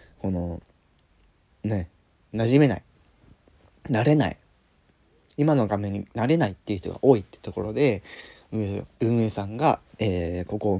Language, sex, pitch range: Japanese, male, 95-135 Hz